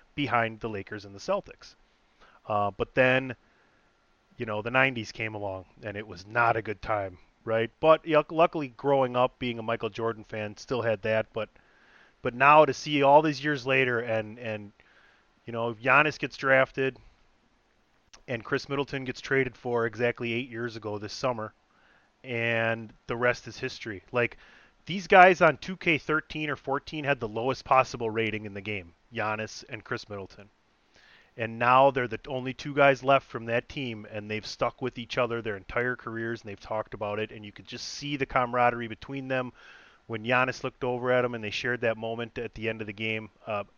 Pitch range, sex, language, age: 110-130 Hz, male, English, 30-49